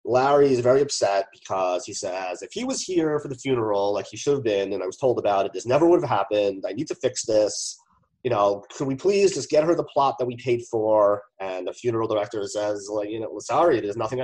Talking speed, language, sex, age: 255 wpm, English, male, 30-49